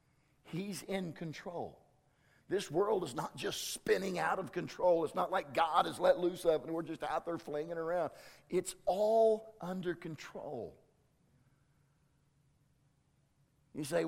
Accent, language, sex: American, English, male